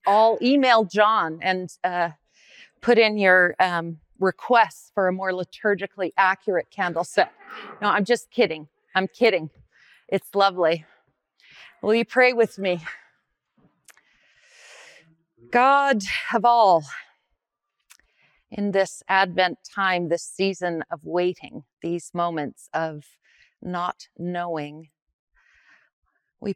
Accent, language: American, English